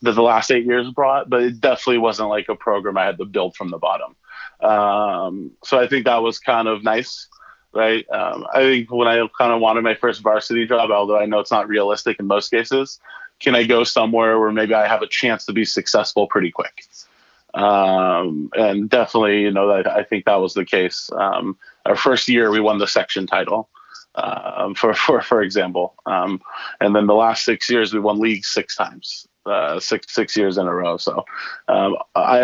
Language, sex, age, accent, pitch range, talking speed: English, male, 20-39, American, 105-120 Hz, 210 wpm